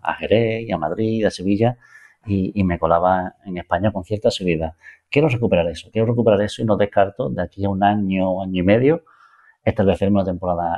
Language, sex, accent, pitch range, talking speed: Spanish, male, Spanish, 90-110 Hz, 200 wpm